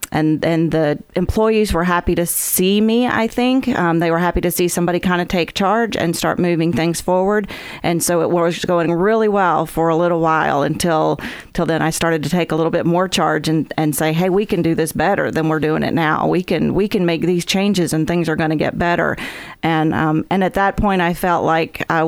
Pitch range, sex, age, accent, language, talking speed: 160-185 Hz, female, 40-59, American, English, 240 wpm